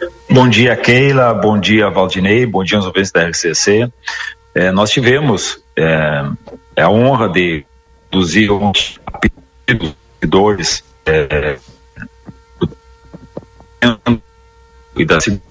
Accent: Brazilian